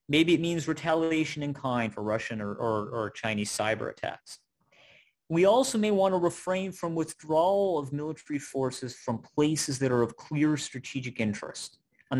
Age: 30-49